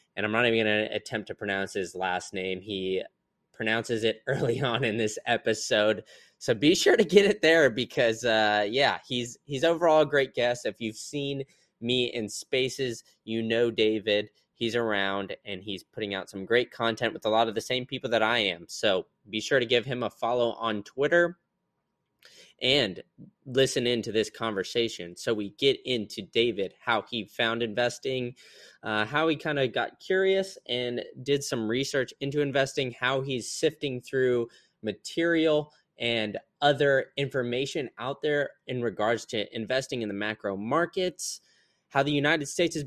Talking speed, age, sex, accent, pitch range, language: 175 wpm, 20-39, male, American, 110-140 Hz, English